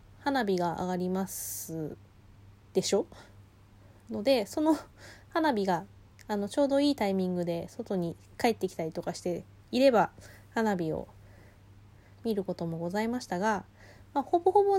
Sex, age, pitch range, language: female, 20-39, 160-240 Hz, Japanese